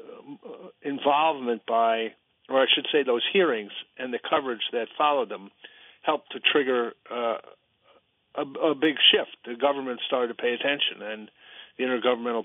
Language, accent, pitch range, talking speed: English, American, 115-145 Hz, 150 wpm